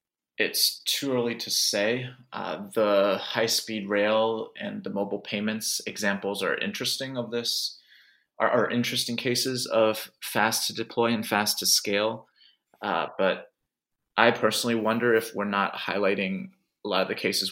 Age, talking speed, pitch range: 20-39, 155 wpm, 100-120 Hz